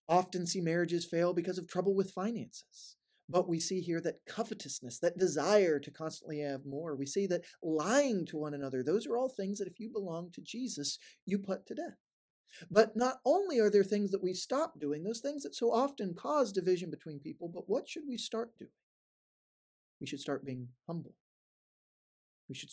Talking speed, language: 195 wpm, English